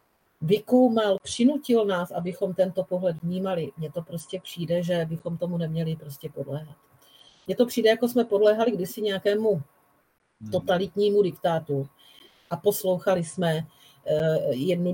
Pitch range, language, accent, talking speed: 145-185 Hz, Czech, native, 125 wpm